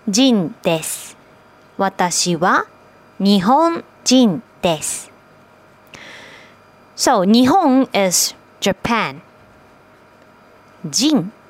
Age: 20-39